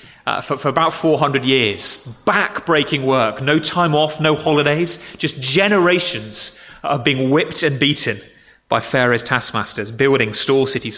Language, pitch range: English, 135-190 Hz